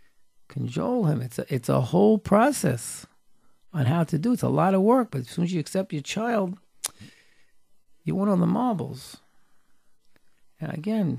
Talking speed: 165 wpm